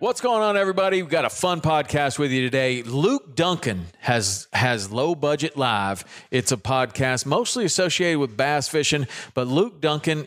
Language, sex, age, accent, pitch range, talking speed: English, male, 40-59, American, 110-140 Hz, 175 wpm